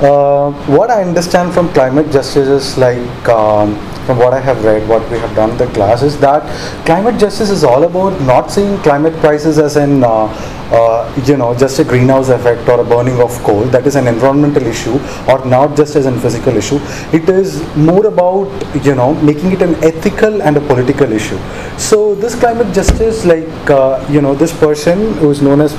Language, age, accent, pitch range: Korean, 30-49, Indian, 130-175 Hz